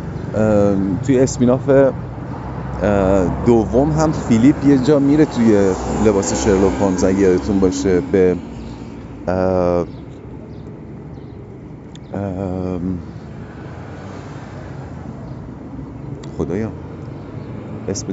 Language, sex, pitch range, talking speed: Persian, male, 100-145 Hz, 60 wpm